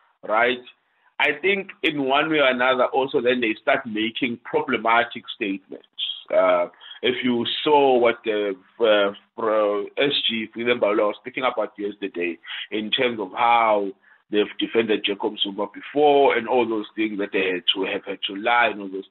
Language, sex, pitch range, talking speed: English, male, 115-170 Hz, 155 wpm